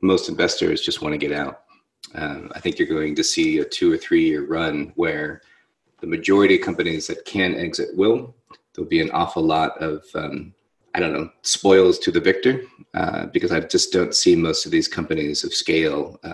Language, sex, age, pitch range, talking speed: English, male, 30-49, 255-370 Hz, 200 wpm